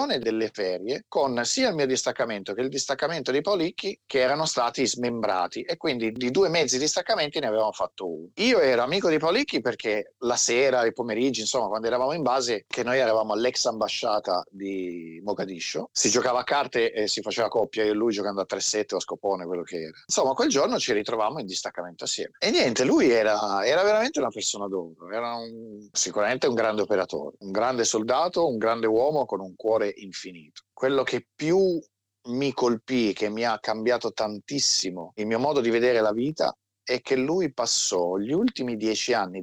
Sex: male